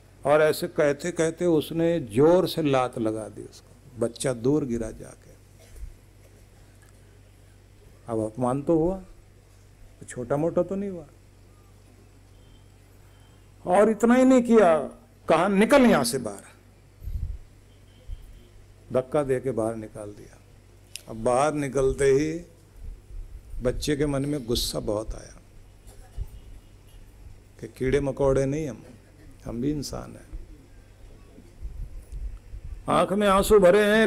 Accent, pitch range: native, 100-145 Hz